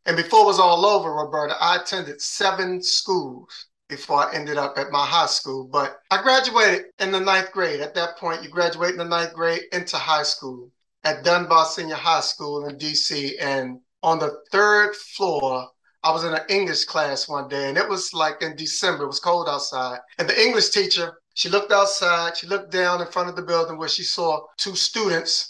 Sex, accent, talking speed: male, American, 205 wpm